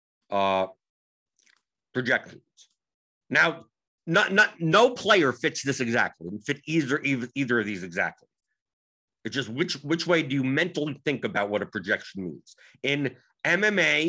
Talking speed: 140 wpm